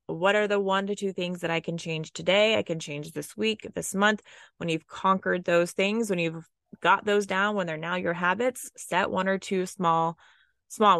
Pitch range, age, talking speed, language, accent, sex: 165-205 Hz, 20-39, 220 wpm, English, American, female